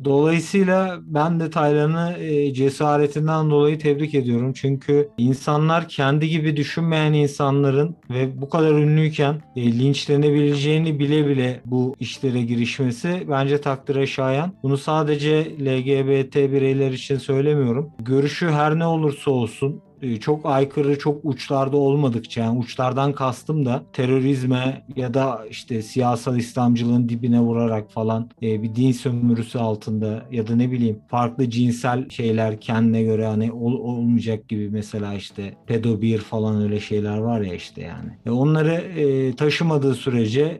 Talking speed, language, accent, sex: 135 wpm, Turkish, native, male